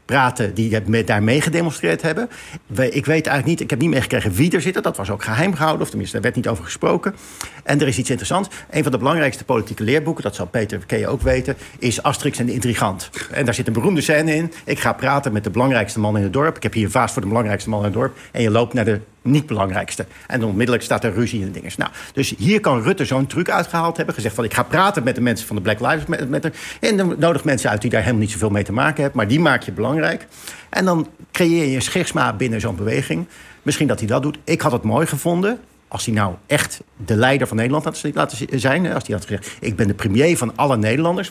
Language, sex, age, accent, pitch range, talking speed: Dutch, male, 50-69, Dutch, 110-150 Hz, 255 wpm